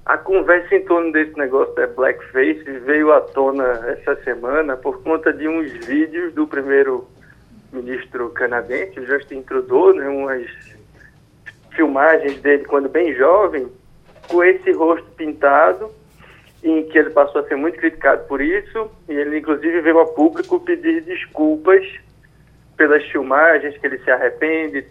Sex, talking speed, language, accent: male, 145 wpm, Portuguese, Brazilian